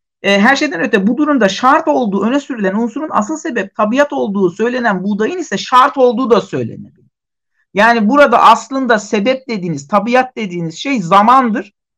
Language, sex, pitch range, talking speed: Turkish, male, 205-260 Hz, 150 wpm